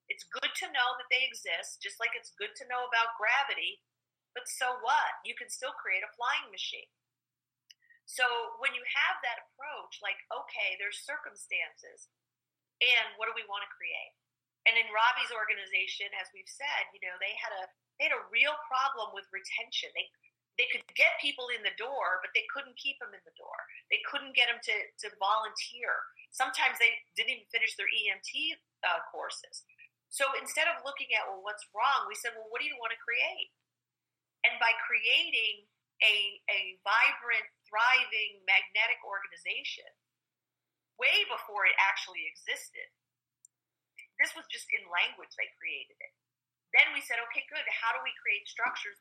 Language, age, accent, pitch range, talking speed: English, 40-59, American, 220-310 Hz, 175 wpm